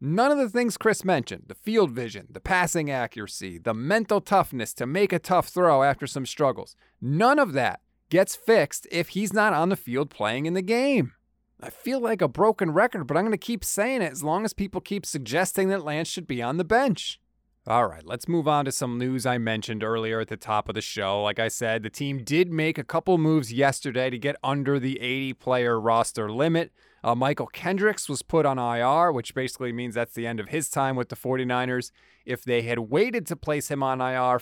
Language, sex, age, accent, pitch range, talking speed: English, male, 30-49, American, 125-175 Hz, 220 wpm